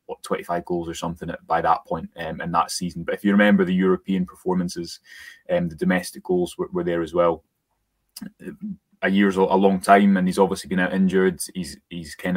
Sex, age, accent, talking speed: male, 20-39, British, 210 wpm